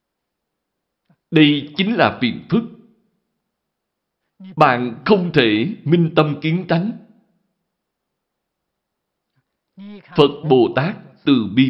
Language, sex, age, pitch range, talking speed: Vietnamese, male, 60-79, 130-205 Hz, 85 wpm